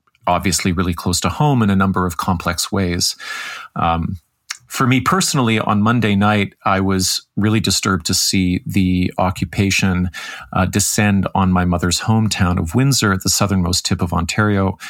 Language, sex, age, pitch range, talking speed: English, male, 40-59, 90-110 Hz, 160 wpm